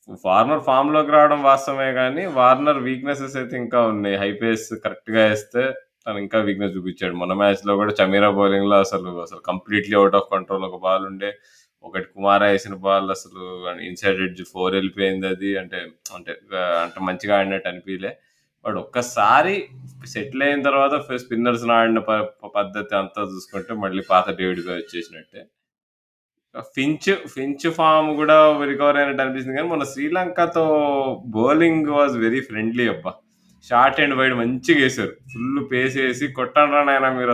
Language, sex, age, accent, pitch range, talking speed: Telugu, male, 20-39, native, 95-130 Hz, 140 wpm